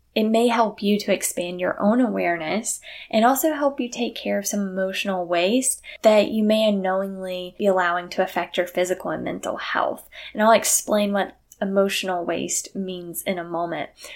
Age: 10-29